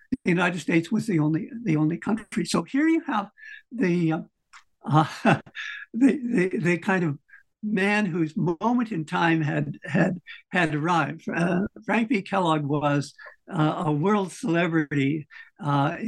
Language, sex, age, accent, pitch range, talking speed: English, male, 60-79, American, 160-210 Hz, 150 wpm